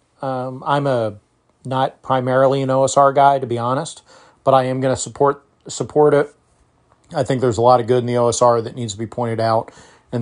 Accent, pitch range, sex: American, 120-140 Hz, male